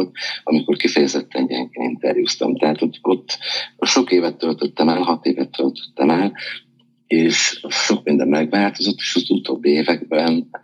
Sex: male